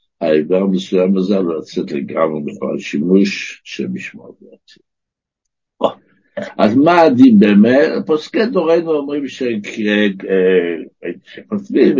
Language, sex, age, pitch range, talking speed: Hebrew, male, 60-79, 95-120 Hz, 100 wpm